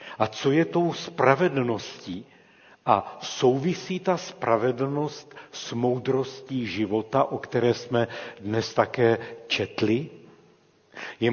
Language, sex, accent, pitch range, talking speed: Czech, male, native, 115-140 Hz, 100 wpm